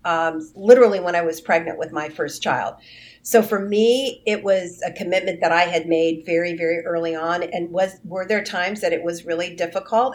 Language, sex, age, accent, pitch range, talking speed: English, female, 50-69, American, 165-190 Hz, 205 wpm